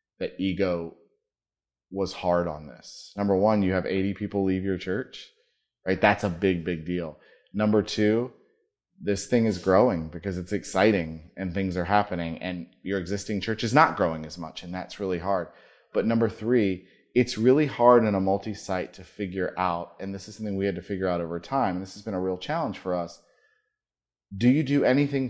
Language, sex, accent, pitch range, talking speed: English, male, American, 90-110 Hz, 195 wpm